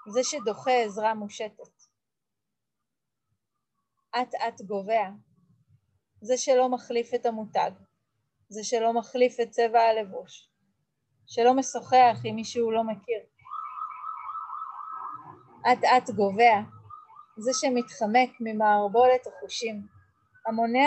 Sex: female